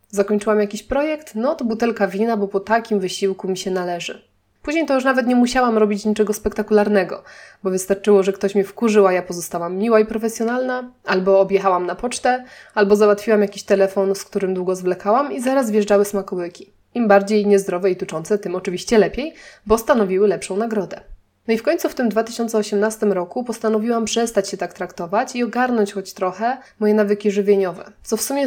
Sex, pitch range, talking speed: female, 195-235 Hz, 180 wpm